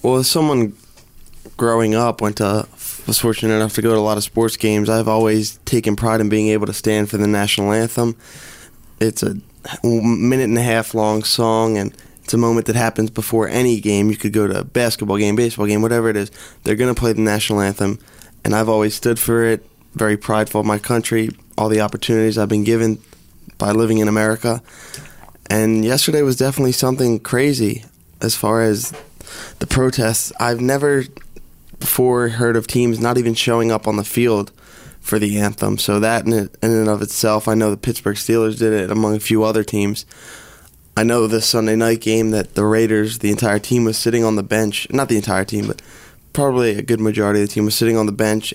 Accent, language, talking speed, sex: American, English, 200 wpm, male